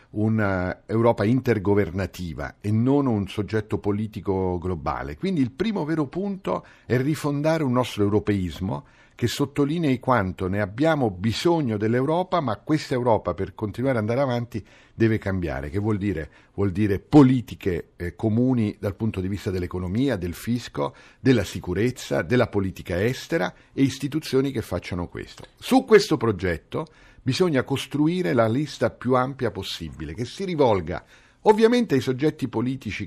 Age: 50-69